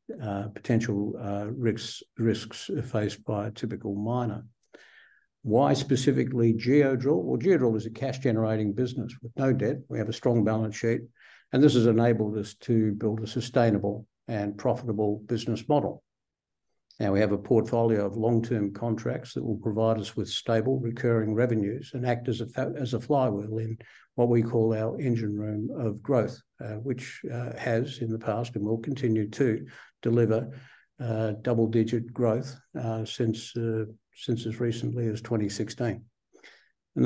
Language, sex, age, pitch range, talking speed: English, male, 60-79, 110-120 Hz, 155 wpm